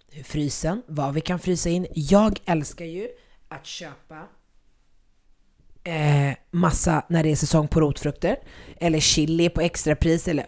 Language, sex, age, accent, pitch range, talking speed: Swedish, female, 30-49, native, 140-175 Hz, 145 wpm